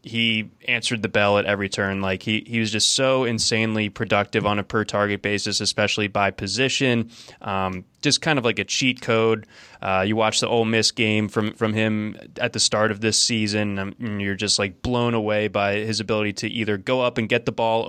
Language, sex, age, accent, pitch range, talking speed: English, male, 20-39, American, 105-125 Hz, 220 wpm